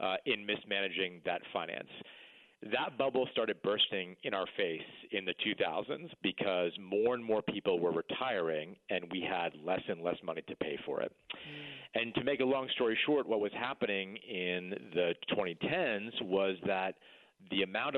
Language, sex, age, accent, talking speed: English, male, 40-59, American, 165 wpm